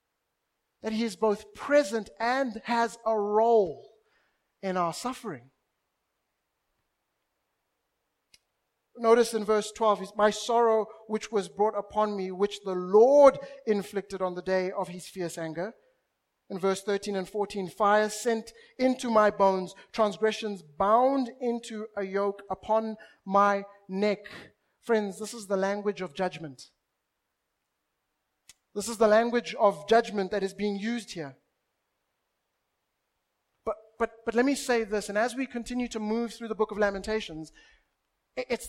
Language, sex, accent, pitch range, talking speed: English, male, South African, 200-235 Hz, 135 wpm